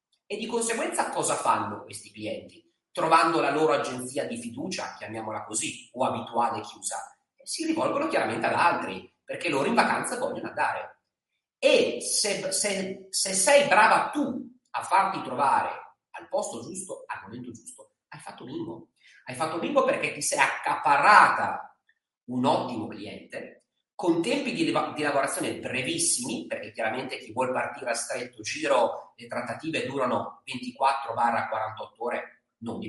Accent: native